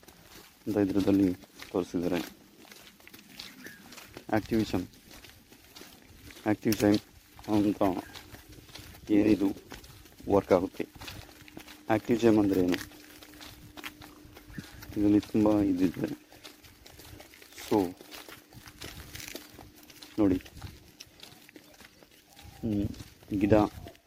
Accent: native